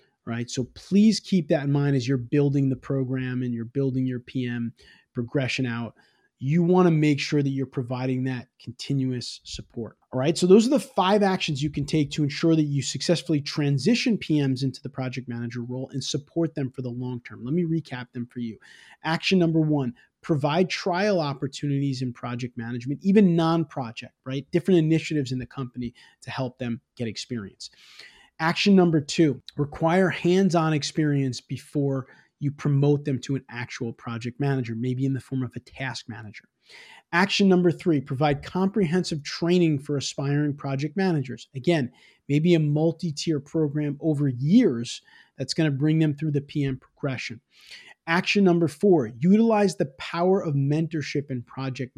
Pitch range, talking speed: 130-165 Hz, 170 wpm